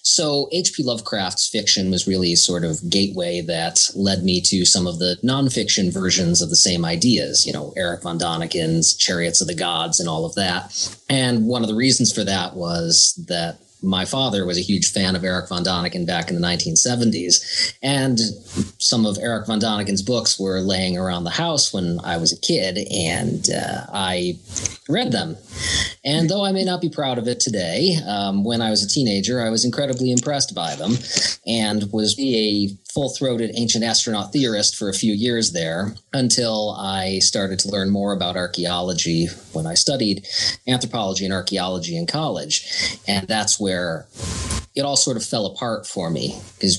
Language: English